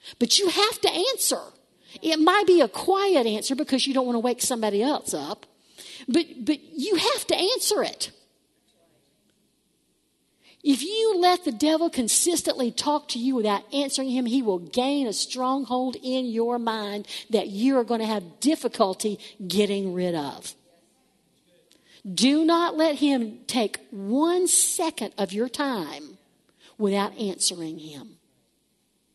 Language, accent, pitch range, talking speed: English, American, 220-295 Hz, 145 wpm